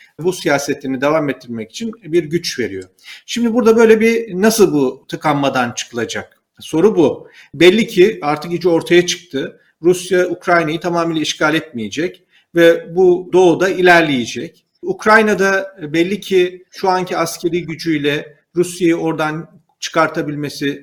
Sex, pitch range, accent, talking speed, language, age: male, 155-195 Hz, native, 125 wpm, Turkish, 50-69